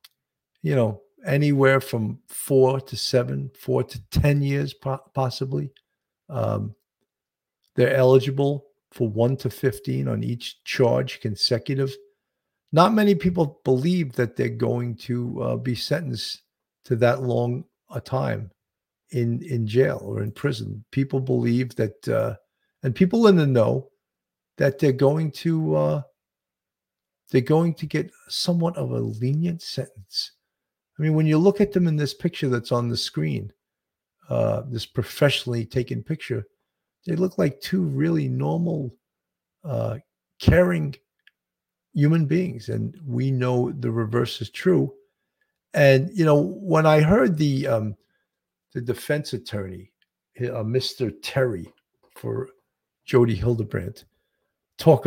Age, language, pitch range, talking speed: 50-69, English, 115-155 Hz, 135 wpm